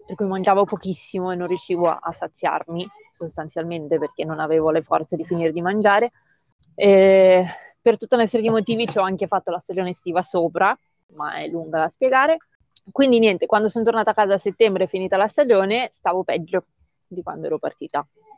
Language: Italian